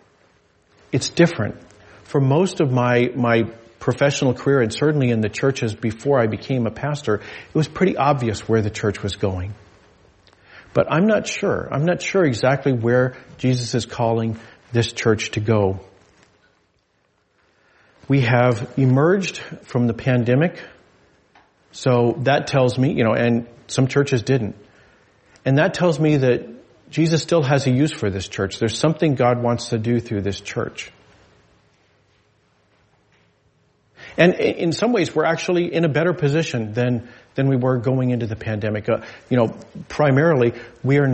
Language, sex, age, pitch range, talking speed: English, male, 40-59, 115-140 Hz, 155 wpm